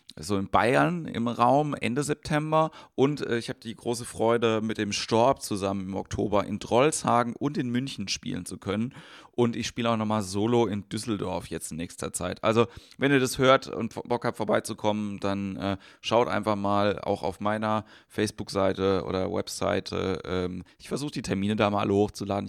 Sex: male